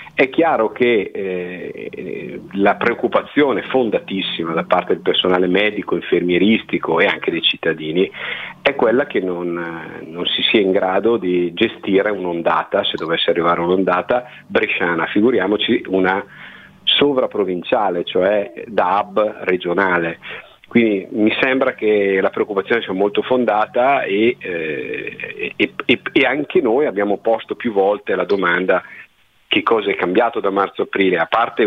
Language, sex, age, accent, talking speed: Italian, male, 40-59, native, 135 wpm